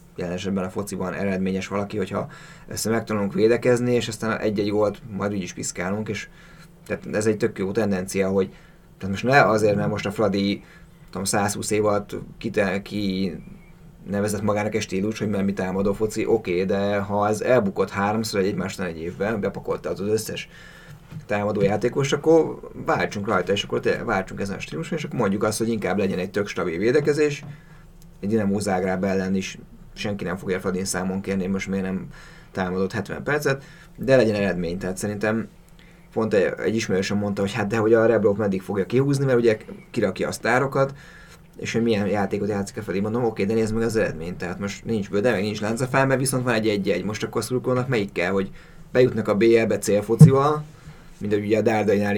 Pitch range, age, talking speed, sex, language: 100-120 Hz, 30-49, 185 wpm, male, Hungarian